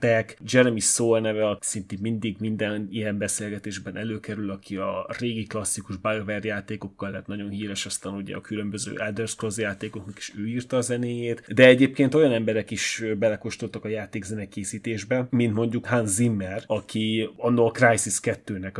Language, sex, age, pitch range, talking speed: Hungarian, male, 30-49, 100-115 Hz, 155 wpm